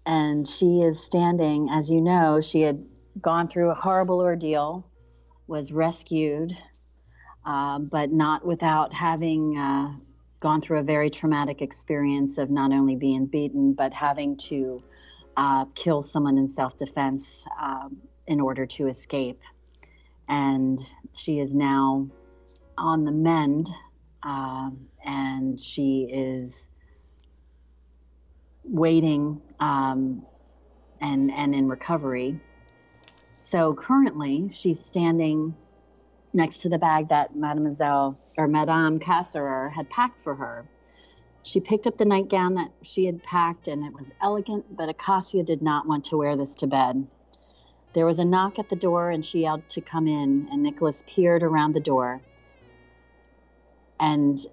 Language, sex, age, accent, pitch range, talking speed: English, female, 40-59, American, 135-165 Hz, 135 wpm